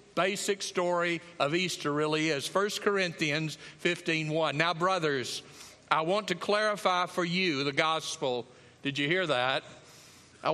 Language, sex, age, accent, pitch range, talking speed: English, male, 50-69, American, 155-190 Hz, 135 wpm